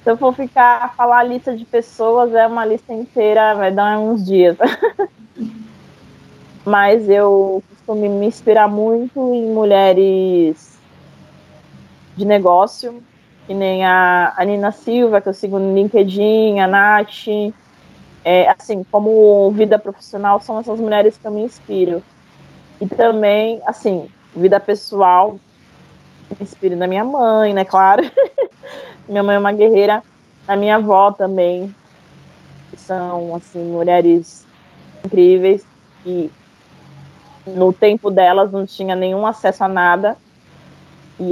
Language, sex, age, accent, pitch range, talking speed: Portuguese, female, 20-39, Brazilian, 190-225 Hz, 130 wpm